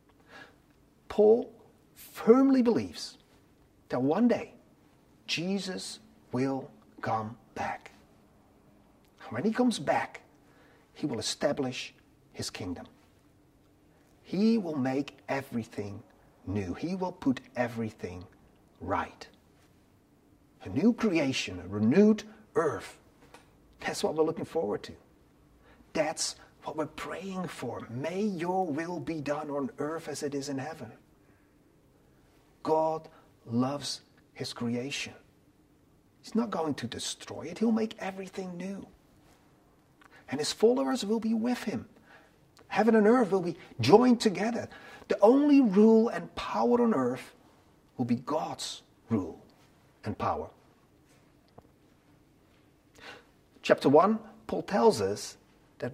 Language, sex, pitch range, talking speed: English, male, 135-215 Hz, 115 wpm